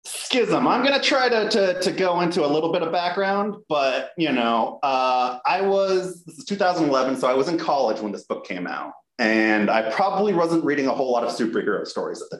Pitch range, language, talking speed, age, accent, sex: 110-165 Hz, English, 225 wpm, 30-49, American, male